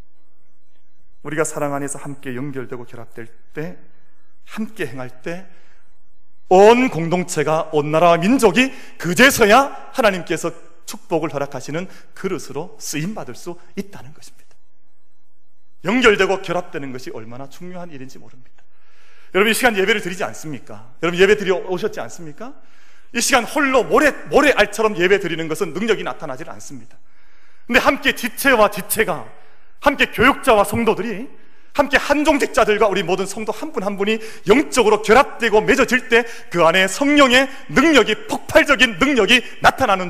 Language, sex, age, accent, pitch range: Korean, male, 30-49, native, 145-230 Hz